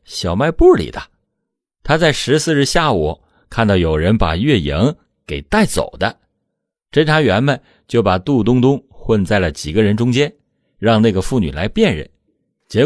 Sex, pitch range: male, 90-135 Hz